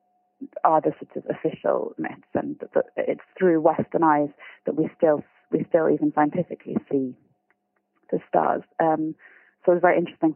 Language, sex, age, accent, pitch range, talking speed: English, female, 30-49, British, 160-195 Hz, 155 wpm